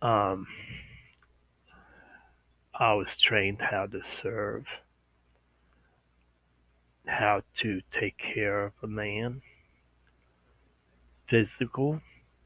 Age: 60-79